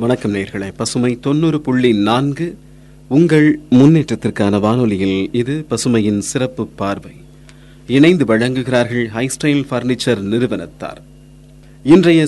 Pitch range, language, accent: 105-145 Hz, Tamil, native